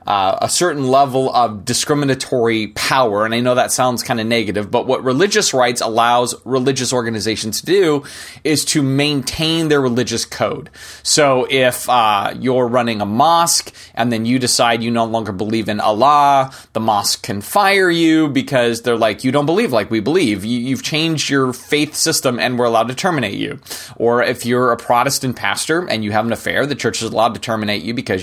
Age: 30-49